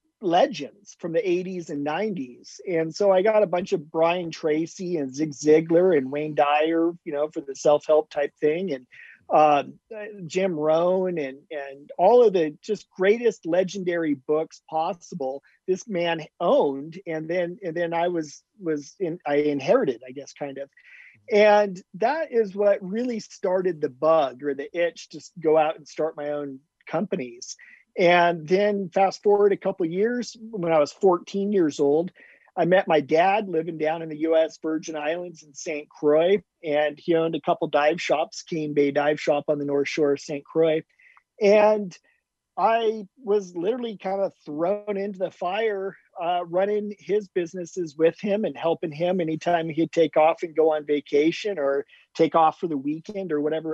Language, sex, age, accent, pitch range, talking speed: English, male, 40-59, American, 150-195 Hz, 180 wpm